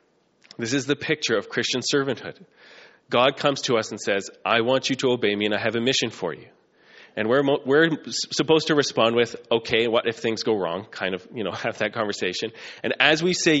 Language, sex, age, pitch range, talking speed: English, male, 20-39, 120-145 Hz, 220 wpm